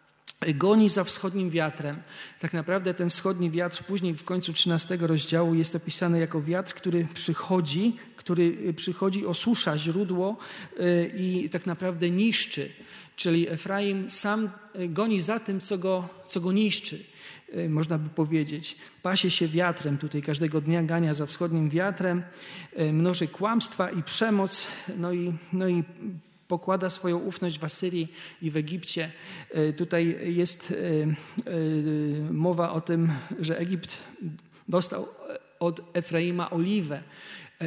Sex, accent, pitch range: male, native, 160-185 Hz